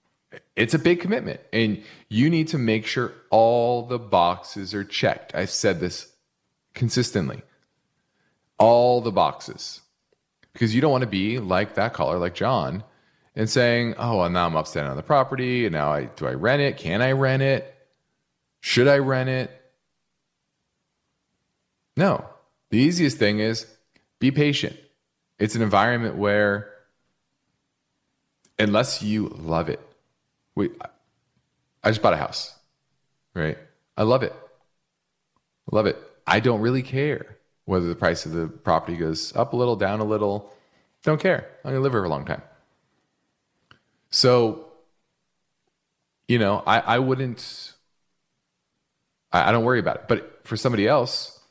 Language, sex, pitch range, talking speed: English, male, 105-135 Hz, 150 wpm